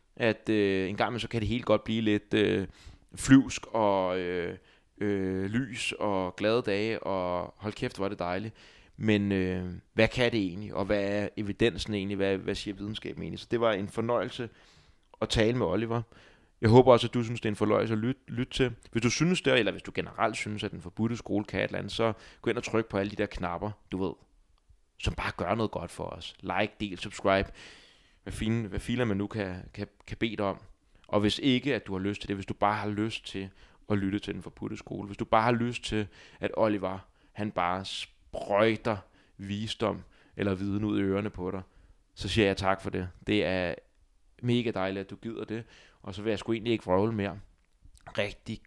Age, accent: 20-39, native